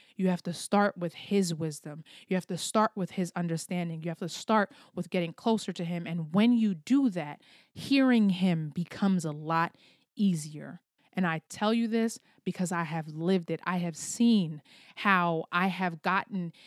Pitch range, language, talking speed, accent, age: 170-215 Hz, English, 185 wpm, American, 20-39